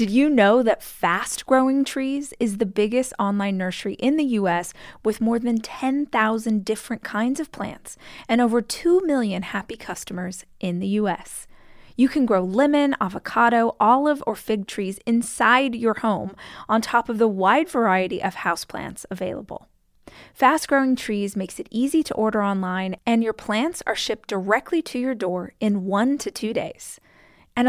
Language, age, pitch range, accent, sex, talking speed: English, 20-39, 205-275 Hz, American, female, 165 wpm